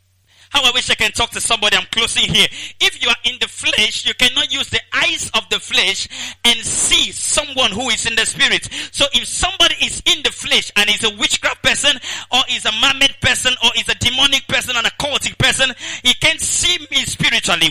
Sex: male